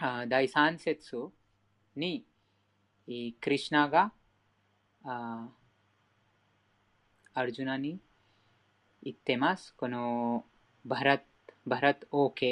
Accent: Indian